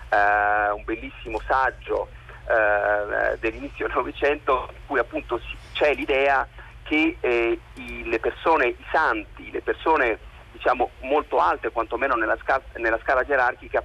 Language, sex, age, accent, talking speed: Italian, male, 40-59, native, 115 wpm